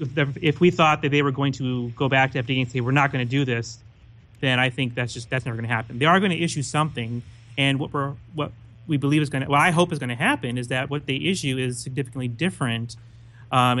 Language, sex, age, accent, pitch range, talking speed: English, male, 30-49, American, 120-145 Hz, 265 wpm